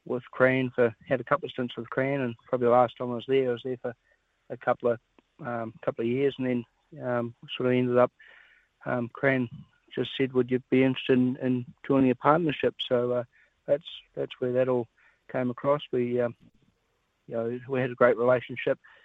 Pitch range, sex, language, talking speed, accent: 125-135 Hz, male, English, 210 wpm, Australian